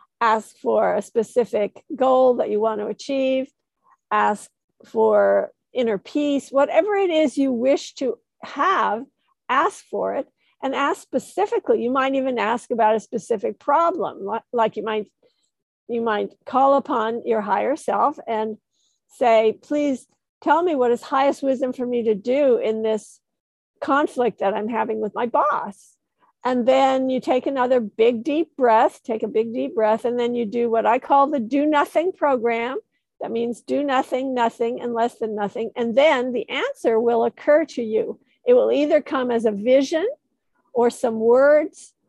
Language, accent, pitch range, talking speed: English, American, 225-285 Hz, 170 wpm